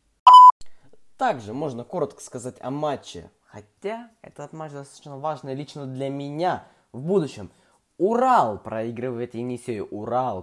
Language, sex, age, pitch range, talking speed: Russian, male, 20-39, 120-190 Hz, 115 wpm